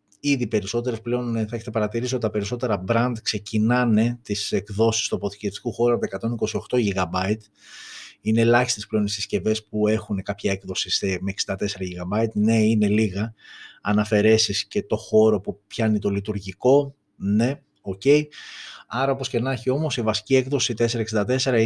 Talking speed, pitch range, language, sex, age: 150 wpm, 105-125 Hz, Greek, male, 30-49